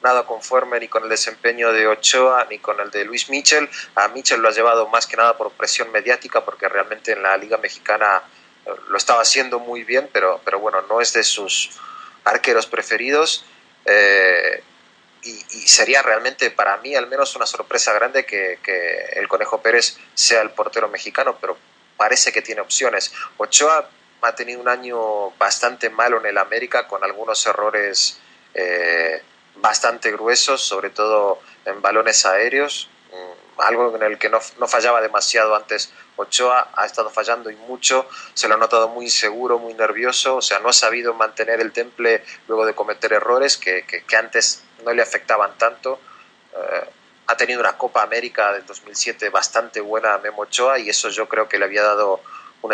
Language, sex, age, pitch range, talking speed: Spanish, male, 30-49, 110-130 Hz, 175 wpm